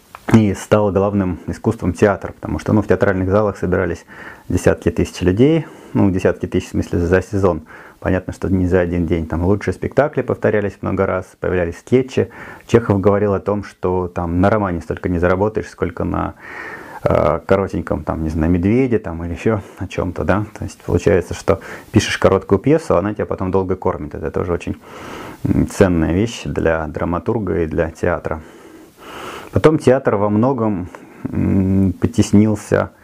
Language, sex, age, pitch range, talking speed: Russian, male, 30-49, 90-110 Hz, 160 wpm